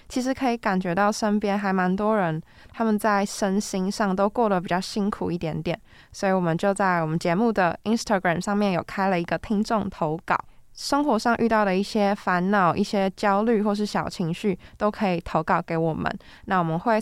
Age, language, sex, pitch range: 20-39, Chinese, female, 180-220 Hz